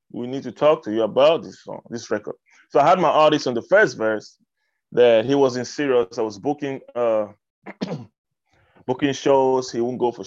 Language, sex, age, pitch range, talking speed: English, male, 20-39, 110-145 Hz, 205 wpm